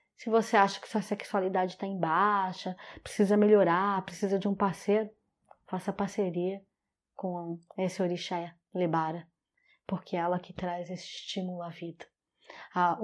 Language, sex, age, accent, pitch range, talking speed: Portuguese, female, 20-39, Brazilian, 185-240 Hz, 145 wpm